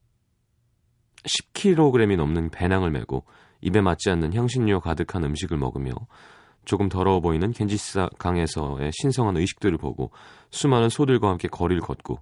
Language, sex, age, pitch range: Korean, male, 30-49, 80-115 Hz